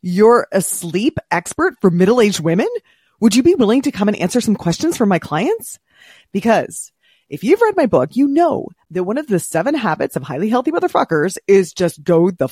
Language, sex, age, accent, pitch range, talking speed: English, female, 30-49, American, 175-255 Hz, 200 wpm